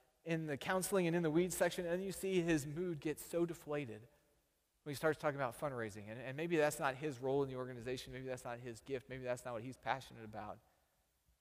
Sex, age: male, 30-49